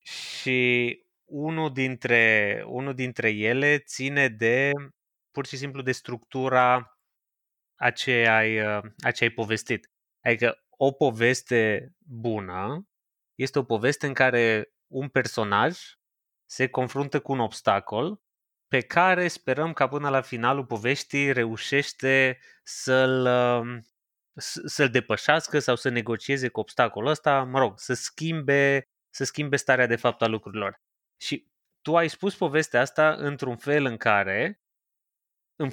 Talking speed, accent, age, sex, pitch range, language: 130 wpm, native, 20-39, male, 115-145 Hz, Romanian